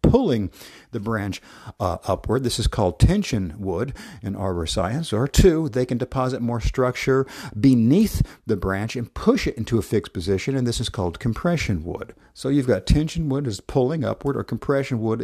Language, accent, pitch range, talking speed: English, American, 100-130 Hz, 185 wpm